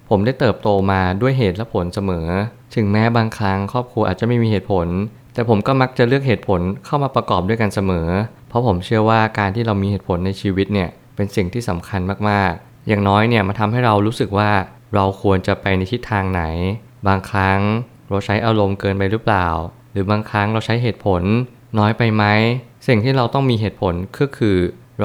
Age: 20-39